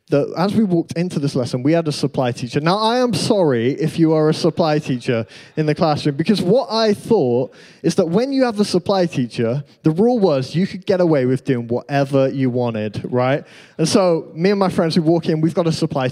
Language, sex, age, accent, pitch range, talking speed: English, male, 20-39, British, 145-200 Hz, 235 wpm